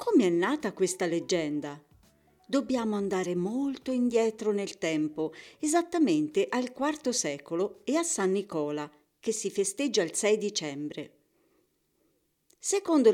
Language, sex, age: Italian, female, 50-69